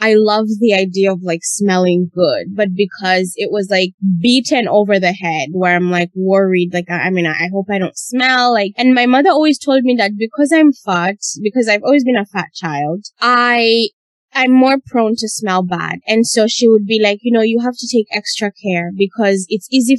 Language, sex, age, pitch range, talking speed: English, female, 20-39, 195-245 Hz, 220 wpm